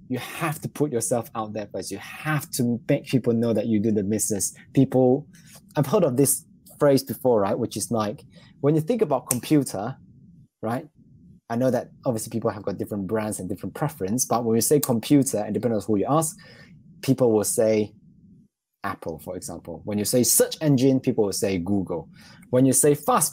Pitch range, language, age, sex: 110-145 Hz, English, 20-39, male